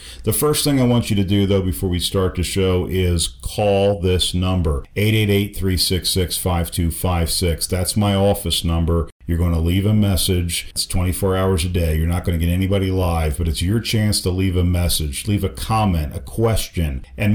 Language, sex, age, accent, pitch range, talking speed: English, male, 50-69, American, 85-100 Hz, 190 wpm